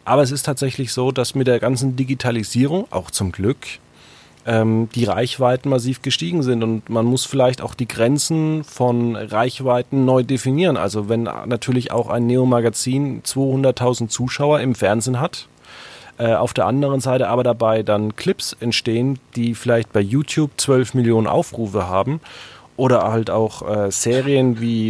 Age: 30-49